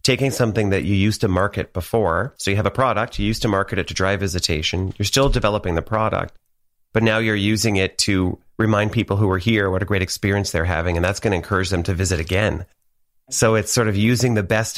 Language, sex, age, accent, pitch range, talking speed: English, male, 30-49, American, 95-115 Hz, 240 wpm